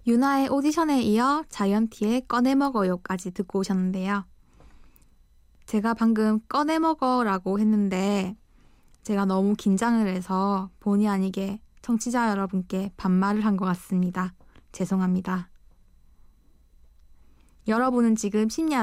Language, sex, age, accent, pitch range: Korean, female, 20-39, native, 185-230 Hz